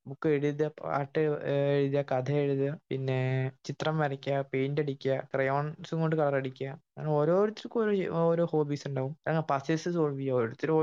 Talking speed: 135 wpm